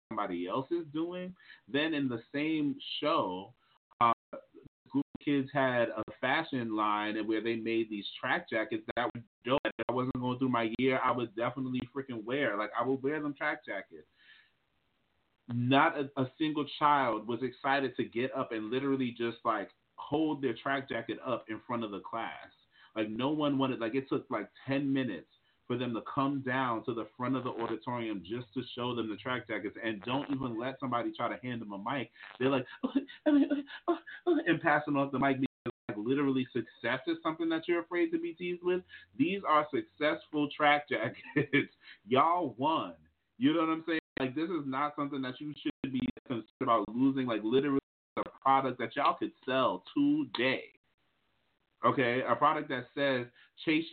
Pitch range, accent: 120-150 Hz, American